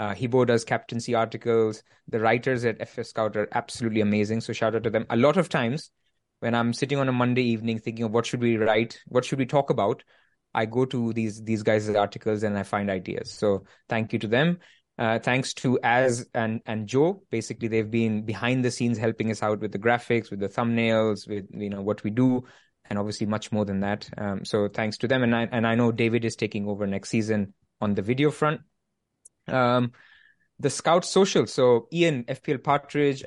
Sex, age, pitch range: male, 20-39, 110-130 Hz